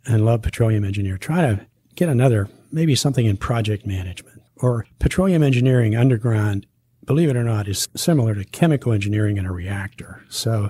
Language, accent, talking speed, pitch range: English, American, 170 wpm, 100-120 Hz